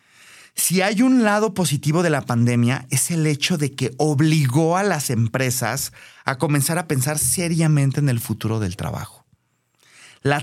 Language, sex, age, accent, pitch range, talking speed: Spanish, male, 30-49, Mexican, 130-160 Hz, 160 wpm